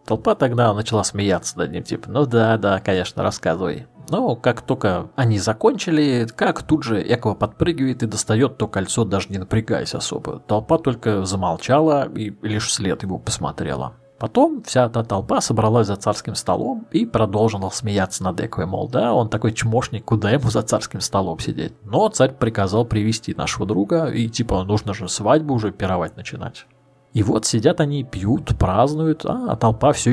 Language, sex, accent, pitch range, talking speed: Russian, male, native, 105-135 Hz, 170 wpm